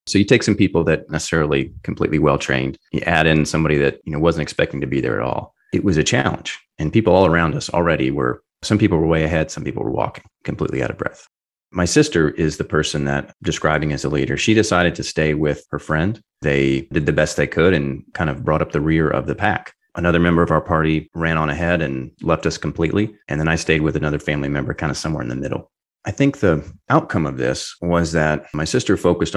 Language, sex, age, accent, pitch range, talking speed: English, male, 30-49, American, 75-85 Hz, 240 wpm